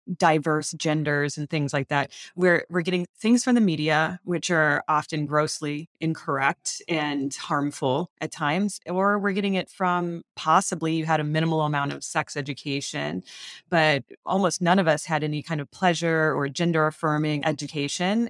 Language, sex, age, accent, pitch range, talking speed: English, female, 20-39, American, 150-180 Hz, 165 wpm